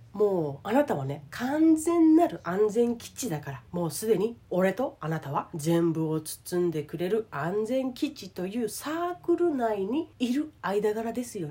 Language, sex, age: Japanese, female, 40-59